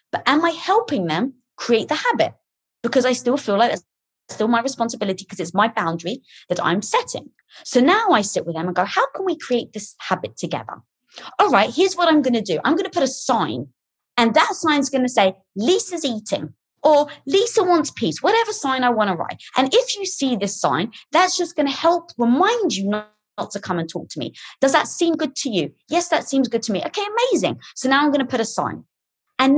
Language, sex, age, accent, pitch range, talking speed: English, female, 20-39, British, 200-310 Hz, 235 wpm